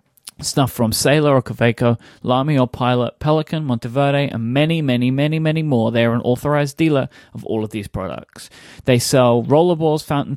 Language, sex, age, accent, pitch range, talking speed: English, male, 30-49, Australian, 115-145 Hz, 175 wpm